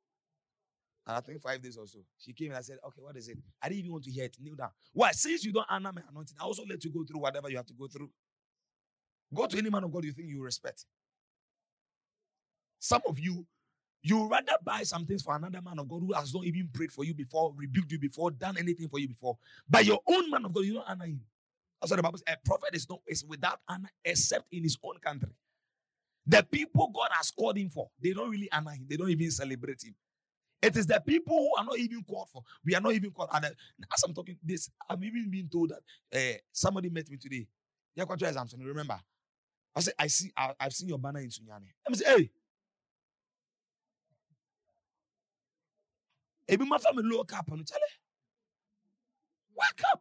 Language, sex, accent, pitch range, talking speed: English, male, Nigerian, 140-200 Hz, 215 wpm